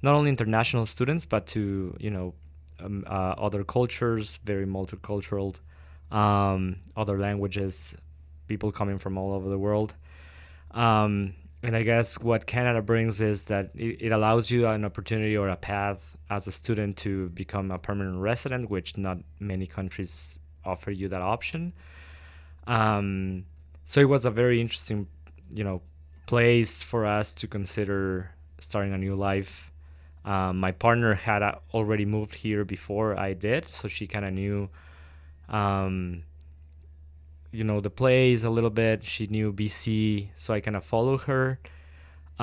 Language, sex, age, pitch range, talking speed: English, male, 20-39, 85-110 Hz, 155 wpm